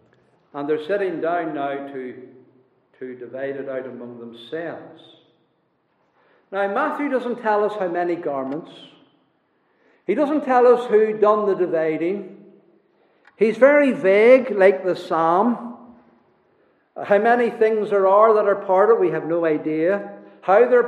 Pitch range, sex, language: 180-280 Hz, male, English